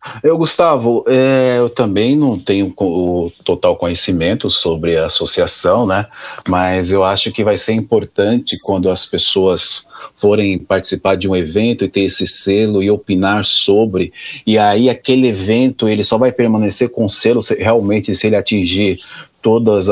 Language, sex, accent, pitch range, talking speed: Portuguese, male, Brazilian, 100-115 Hz, 150 wpm